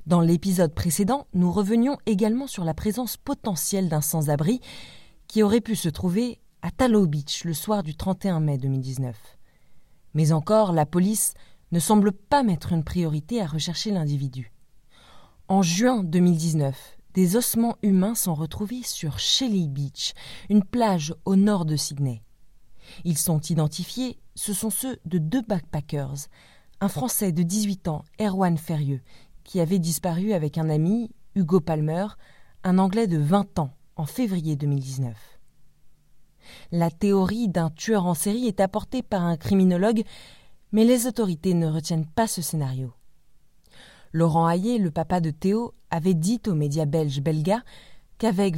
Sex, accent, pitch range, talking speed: female, French, 155-210 Hz, 150 wpm